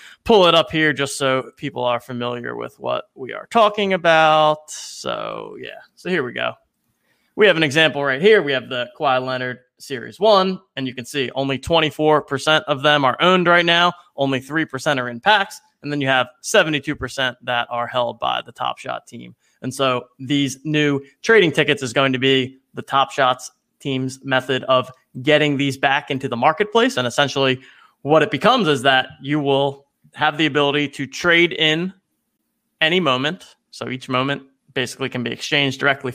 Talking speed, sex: 185 wpm, male